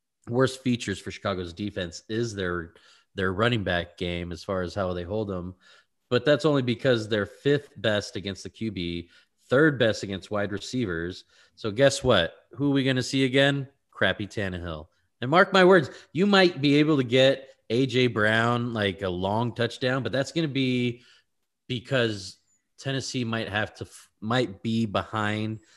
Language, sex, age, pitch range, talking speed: English, male, 30-49, 100-130 Hz, 170 wpm